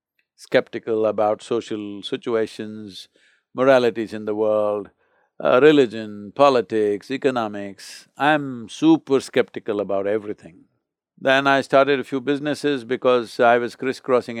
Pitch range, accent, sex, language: 110-145 Hz, Indian, male, English